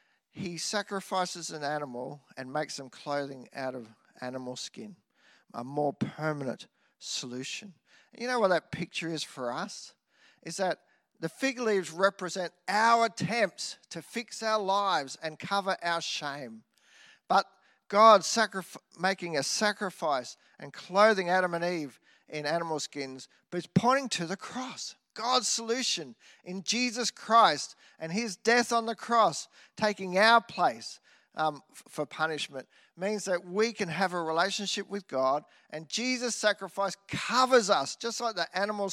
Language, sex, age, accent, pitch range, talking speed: English, male, 40-59, Australian, 160-220 Hz, 145 wpm